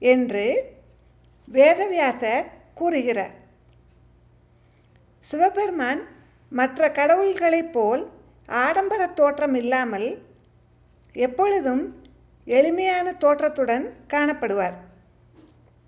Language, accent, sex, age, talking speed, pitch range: Tamil, native, female, 50-69, 50 wpm, 230-335 Hz